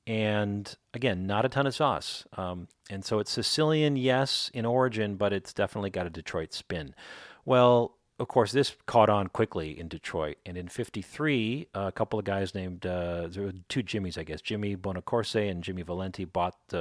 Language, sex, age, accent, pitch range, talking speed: English, male, 40-59, American, 90-110 Hz, 190 wpm